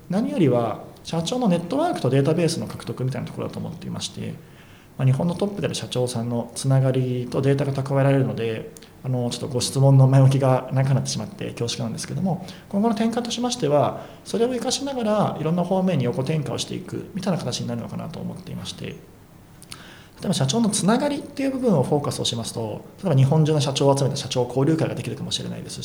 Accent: native